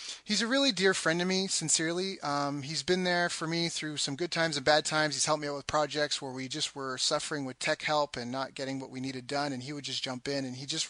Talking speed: 280 wpm